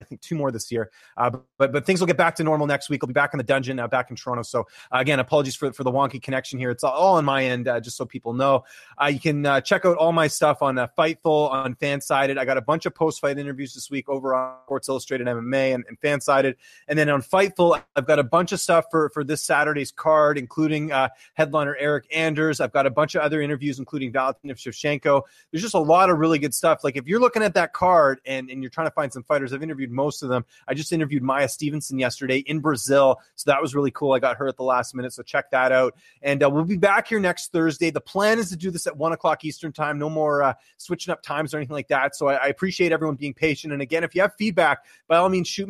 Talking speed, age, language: 275 wpm, 30-49, English